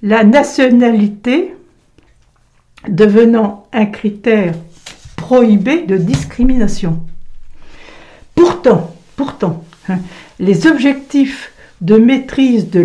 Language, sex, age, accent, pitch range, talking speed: French, female, 60-79, French, 205-265 Hz, 75 wpm